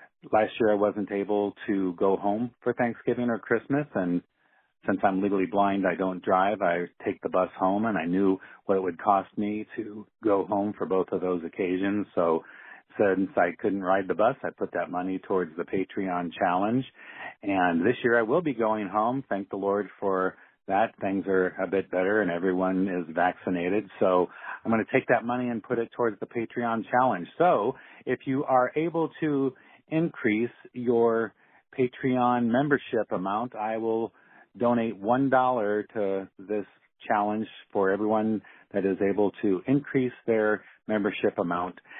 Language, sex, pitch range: English, male, 95-120 Hz